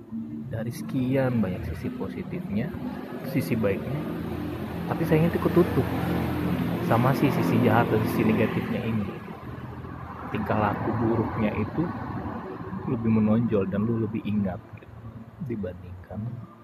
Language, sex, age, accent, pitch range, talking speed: Indonesian, male, 30-49, native, 95-115 Hz, 110 wpm